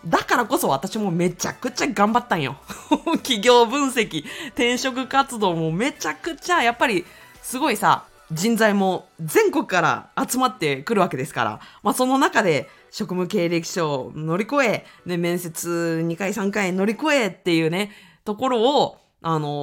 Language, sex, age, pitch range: Japanese, female, 20-39, 165-250 Hz